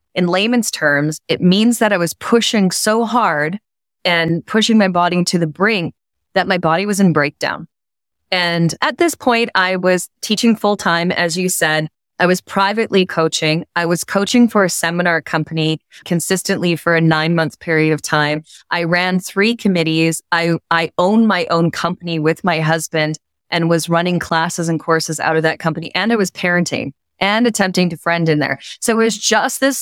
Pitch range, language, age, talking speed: 165-200 Hz, English, 20-39, 185 wpm